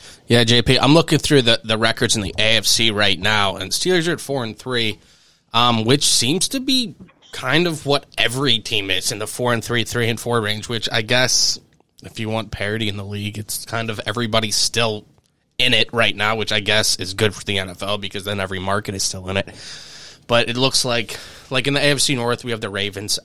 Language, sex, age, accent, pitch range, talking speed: English, male, 20-39, American, 100-120 Hz, 225 wpm